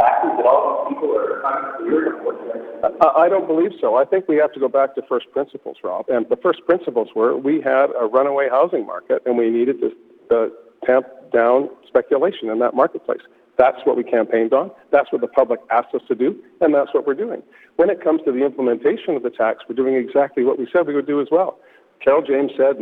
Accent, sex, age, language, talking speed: American, male, 50-69, English, 200 wpm